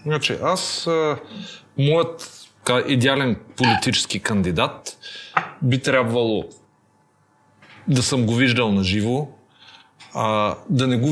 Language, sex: Bulgarian, male